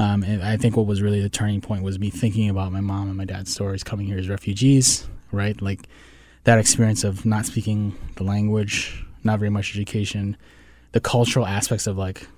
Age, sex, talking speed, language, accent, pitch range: 20-39, male, 205 wpm, English, American, 95-115 Hz